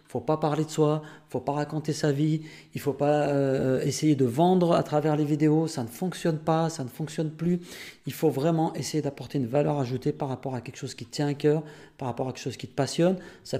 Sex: male